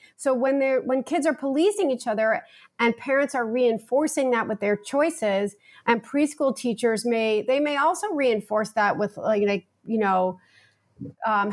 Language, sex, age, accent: English, female, 40-59, American